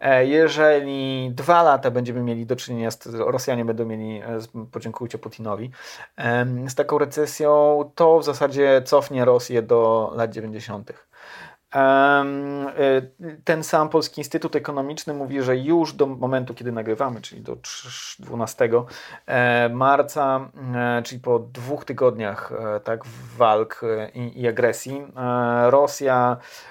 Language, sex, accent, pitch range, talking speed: Polish, male, native, 125-150 Hz, 110 wpm